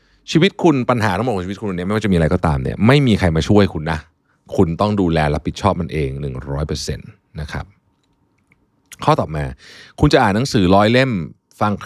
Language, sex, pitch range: Thai, male, 80-110 Hz